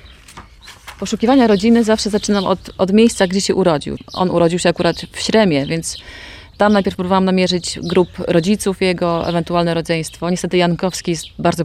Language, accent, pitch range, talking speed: Polish, native, 165-200 Hz, 155 wpm